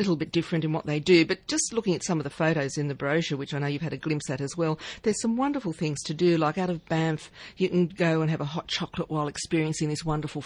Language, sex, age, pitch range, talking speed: English, female, 50-69, 150-180 Hz, 300 wpm